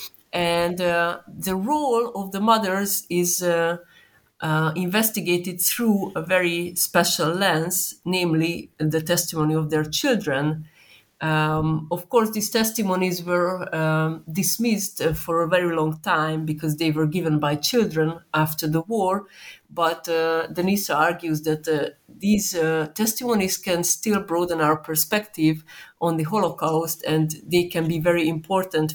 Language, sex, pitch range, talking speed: English, female, 155-185 Hz, 140 wpm